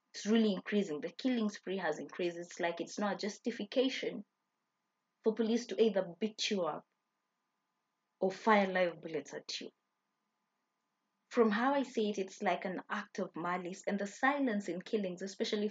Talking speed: 170 wpm